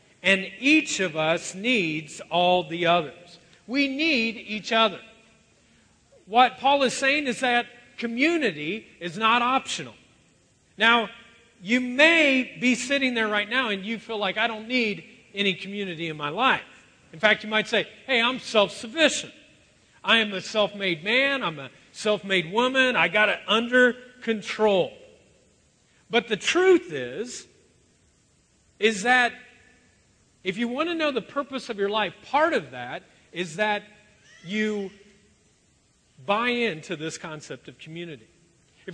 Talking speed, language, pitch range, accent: 145 wpm, English, 190-250 Hz, American